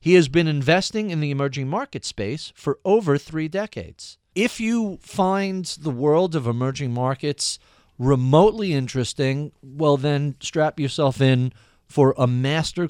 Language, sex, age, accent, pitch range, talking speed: English, male, 50-69, American, 120-160 Hz, 145 wpm